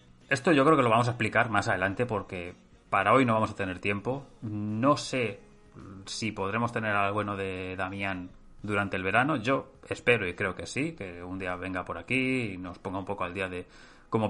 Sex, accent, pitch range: male, Spanish, 95-115 Hz